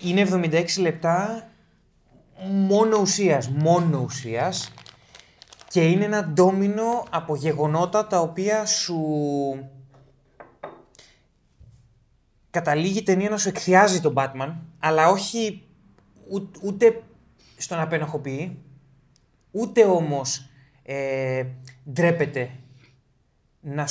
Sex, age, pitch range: male, 20-39, 125-175 Hz